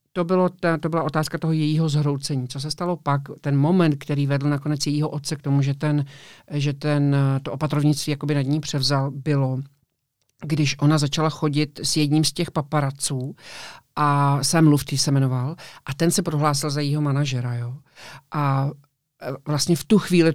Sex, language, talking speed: male, Czech, 175 wpm